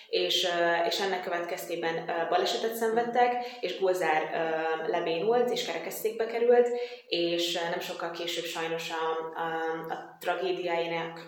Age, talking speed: 20-39, 110 wpm